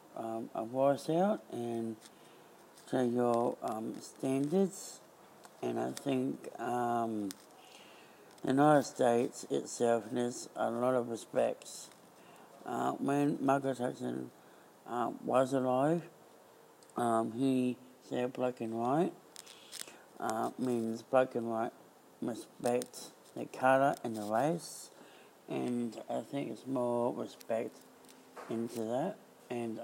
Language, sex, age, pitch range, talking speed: English, male, 60-79, 110-125 Hz, 110 wpm